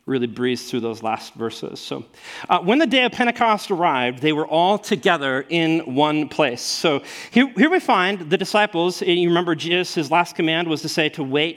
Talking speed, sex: 205 wpm, male